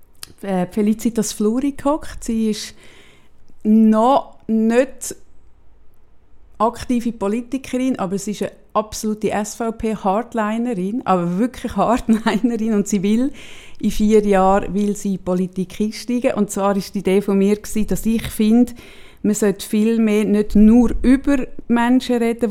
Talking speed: 135 wpm